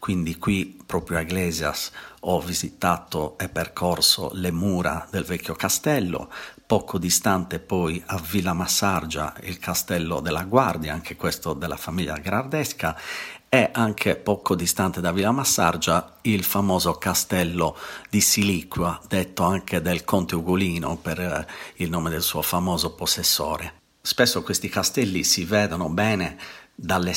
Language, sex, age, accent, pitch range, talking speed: Italian, male, 50-69, native, 85-95 Hz, 135 wpm